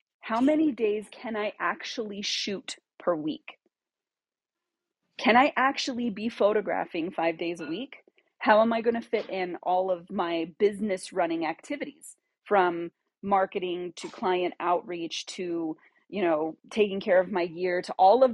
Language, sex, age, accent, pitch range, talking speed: English, female, 30-49, American, 180-230 Hz, 155 wpm